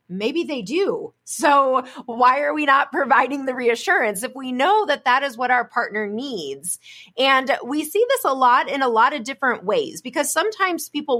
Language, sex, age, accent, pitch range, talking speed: English, female, 30-49, American, 220-285 Hz, 195 wpm